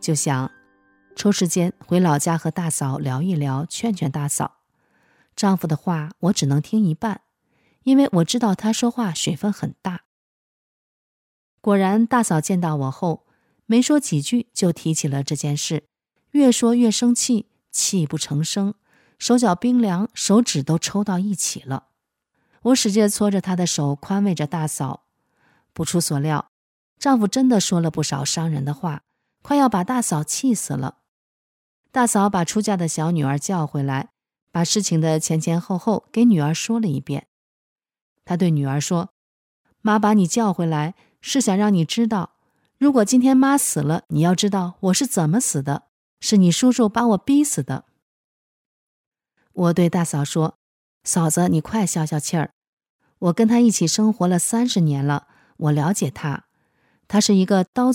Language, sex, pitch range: Chinese, female, 155-220 Hz